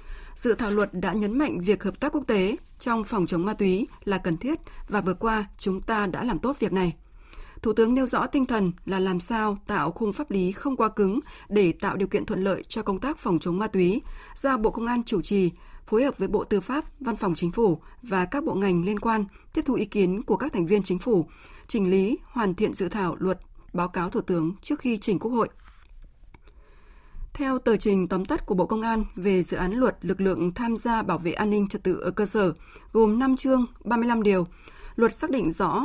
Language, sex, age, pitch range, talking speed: Vietnamese, female, 20-39, 185-230 Hz, 235 wpm